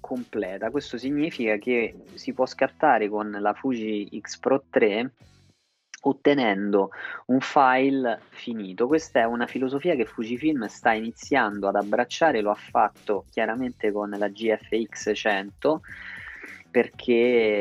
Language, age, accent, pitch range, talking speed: Italian, 20-39, native, 105-130 Hz, 120 wpm